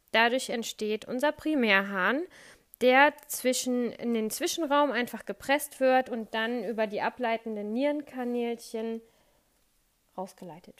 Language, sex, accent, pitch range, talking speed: German, female, German, 215-260 Hz, 105 wpm